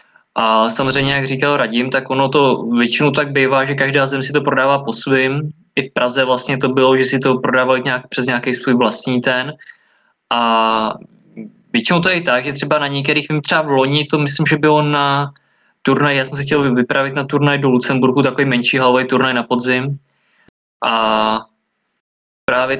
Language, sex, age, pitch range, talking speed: Czech, male, 20-39, 130-145 Hz, 185 wpm